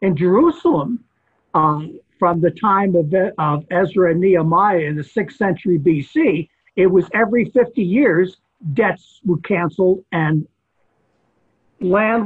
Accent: American